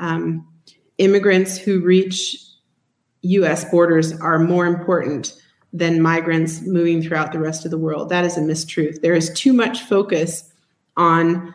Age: 30-49